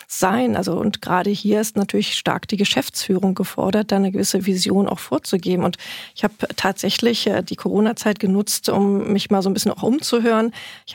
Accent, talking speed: German, 180 wpm